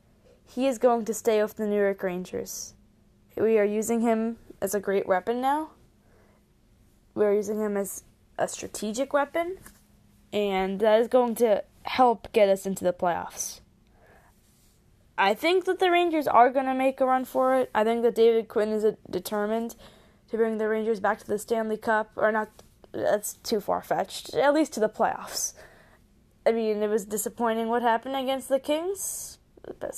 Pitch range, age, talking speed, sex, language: 205-260 Hz, 10-29, 175 wpm, female, English